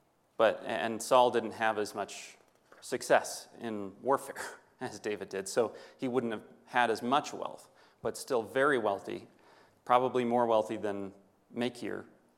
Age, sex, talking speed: 30-49, male, 140 wpm